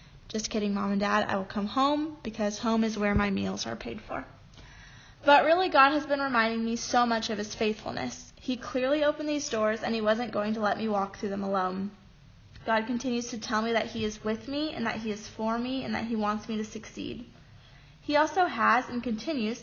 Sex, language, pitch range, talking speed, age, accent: female, English, 210-260 Hz, 225 wpm, 20-39, American